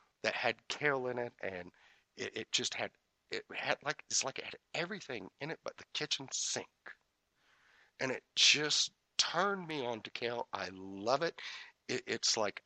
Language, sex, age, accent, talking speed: English, male, 40-59, American, 180 wpm